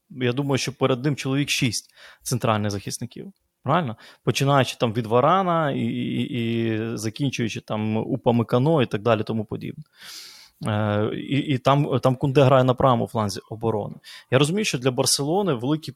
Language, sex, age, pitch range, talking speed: Ukrainian, male, 20-39, 110-130 Hz, 155 wpm